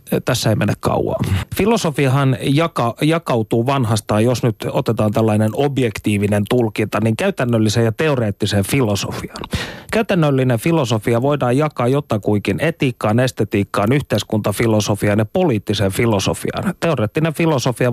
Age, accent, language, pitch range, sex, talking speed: 30-49, native, Finnish, 110-150 Hz, male, 105 wpm